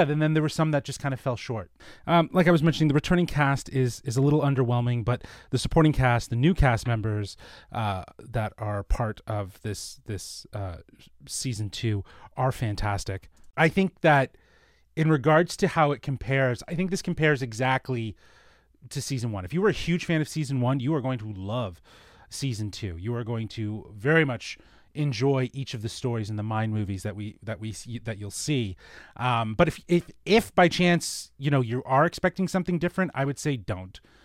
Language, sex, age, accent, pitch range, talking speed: English, male, 30-49, American, 105-140 Hz, 205 wpm